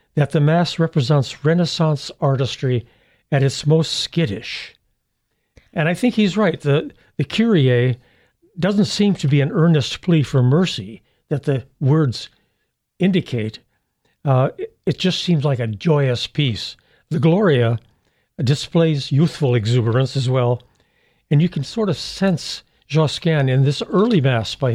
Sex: male